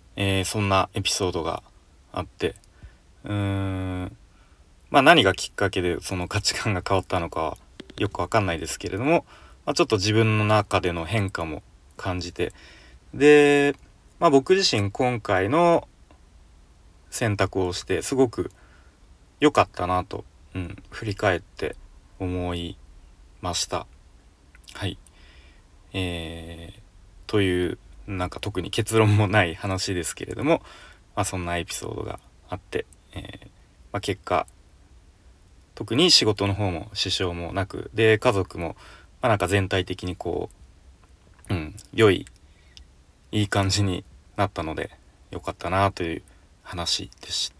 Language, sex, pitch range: Japanese, male, 85-100 Hz